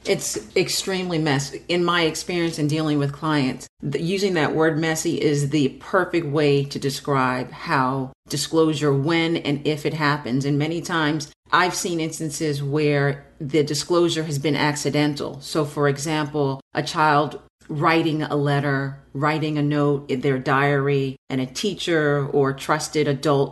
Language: English